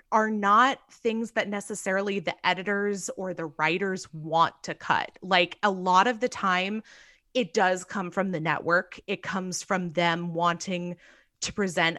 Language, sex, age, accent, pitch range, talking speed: English, female, 20-39, American, 180-235 Hz, 160 wpm